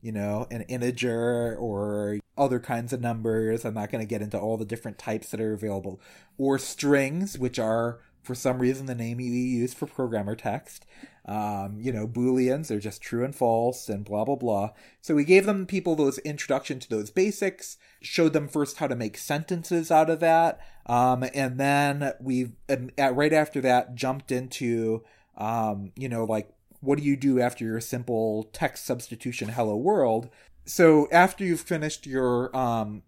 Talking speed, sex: 180 wpm, male